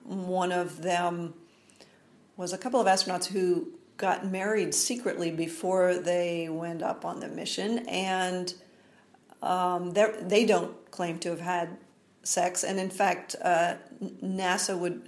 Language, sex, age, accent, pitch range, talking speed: English, female, 50-69, American, 170-205 Hz, 135 wpm